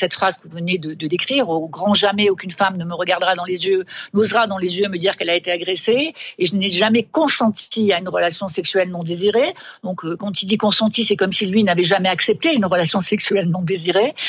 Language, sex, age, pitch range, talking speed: French, female, 50-69, 190-245 Hz, 240 wpm